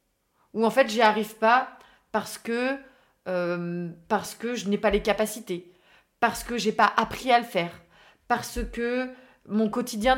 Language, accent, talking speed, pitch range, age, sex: French, French, 160 wpm, 215-300 Hz, 20-39, female